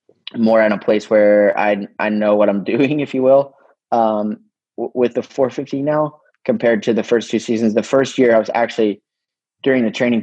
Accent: American